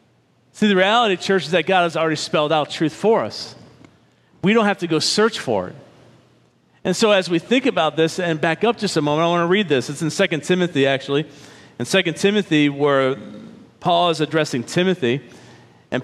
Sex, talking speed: male, 200 wpm